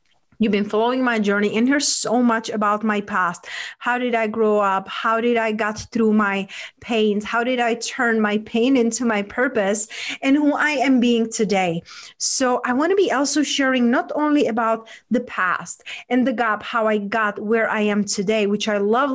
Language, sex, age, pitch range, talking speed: English, female, 30-49, 215-260 Hz, 200 wpm